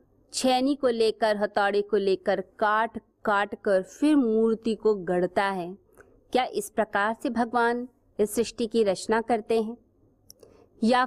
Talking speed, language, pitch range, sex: 135 wpm, Hindi, 200-250 Hz, female